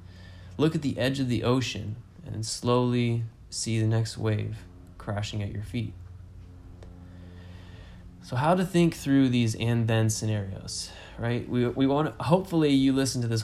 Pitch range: 95-120 Hz